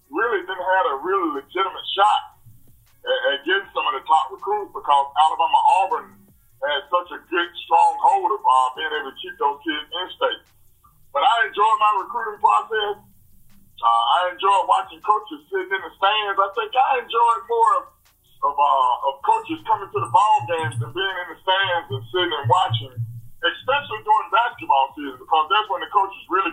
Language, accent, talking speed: English, American, 180 wpm